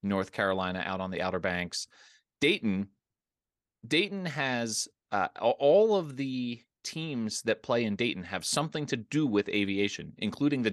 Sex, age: male, 30-49